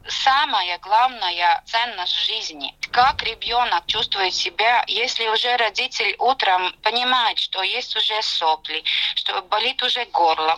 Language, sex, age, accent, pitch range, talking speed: Russian, female, 20-39, native, 200-275 Hz, 120 wpm